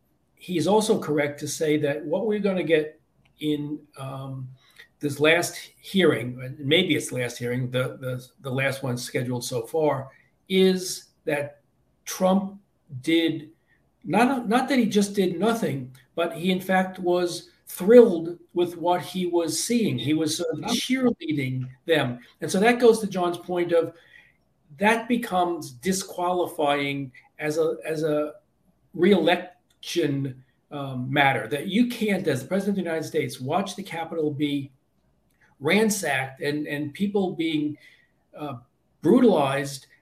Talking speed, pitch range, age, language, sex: 145 wpm, 140-180 Hz, 50-69, English, male